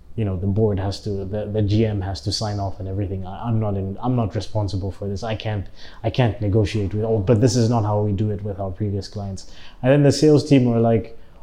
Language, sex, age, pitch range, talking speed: English, male, 20-39, 100-120 Hz, 265 wpm